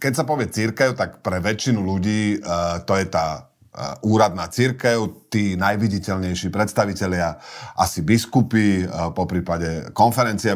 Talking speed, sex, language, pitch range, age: 135 wpm, male, Slovak, 100-120 Hz, 40-59